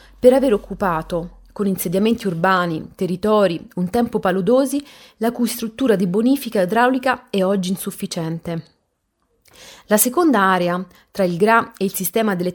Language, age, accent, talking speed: Italian, 30-49, native, 140 wpm